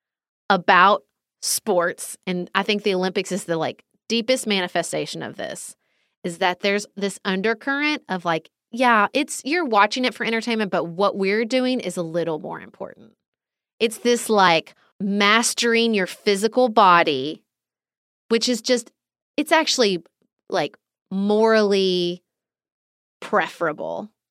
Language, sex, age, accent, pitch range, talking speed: English, female, 30-49, American, 185-235 Hz, 130 wpm